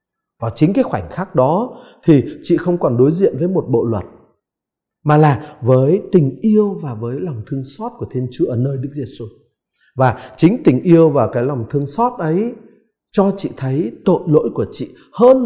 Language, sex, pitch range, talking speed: Vietnamese, male, 120-165 Hz, 200 wpm